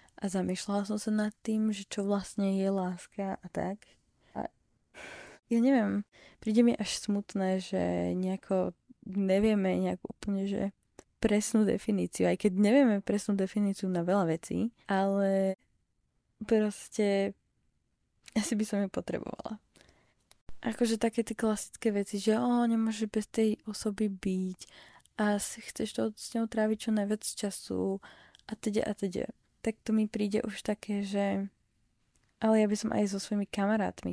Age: 20-39